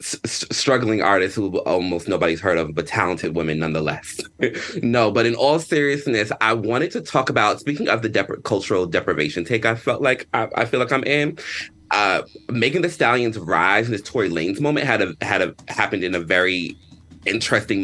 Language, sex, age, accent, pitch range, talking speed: English, male, 30-49, American, 95-140 Hz, 190 wpm